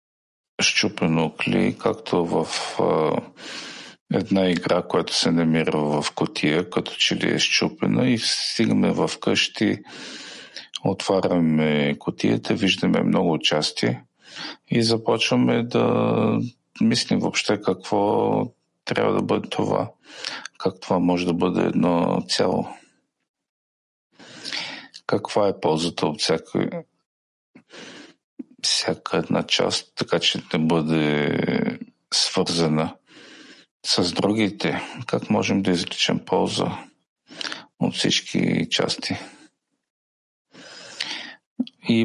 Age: 50-69